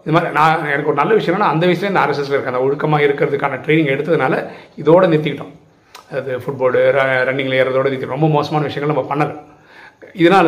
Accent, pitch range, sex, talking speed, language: native, 130-150 Hz, male, 170 wpm, Tamil